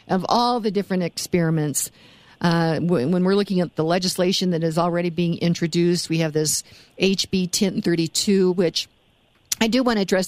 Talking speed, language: 175 wpm, English